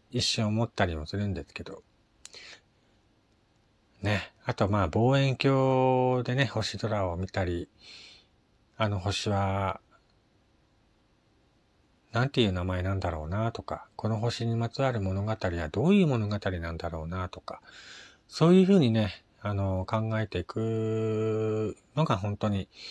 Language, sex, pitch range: Japanese, male, 95-120 Hz